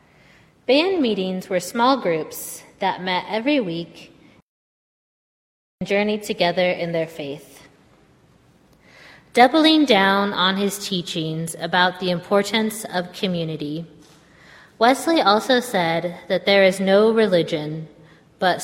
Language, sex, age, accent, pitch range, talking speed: English, female, 20-39, American, 170-210 Hz, 110 wpm